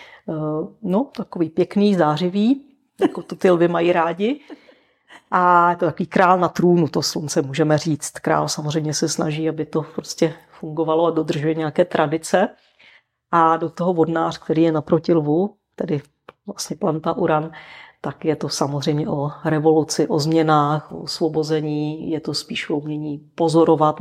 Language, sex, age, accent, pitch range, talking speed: Czech, female, 40-59, native, 155-180 Hz, 150 wpm